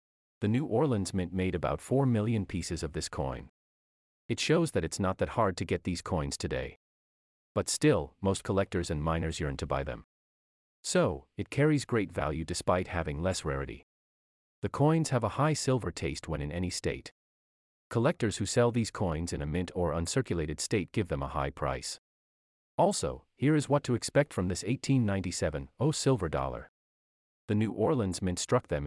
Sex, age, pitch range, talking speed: male, 40-59, 80-125 Hz, 185 wpm